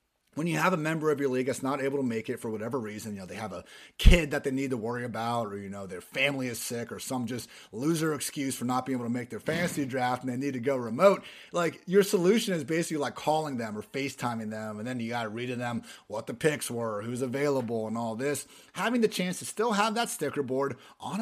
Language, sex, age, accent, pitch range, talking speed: English, male, 30-49, American, 125-165 Hz, 270 wpm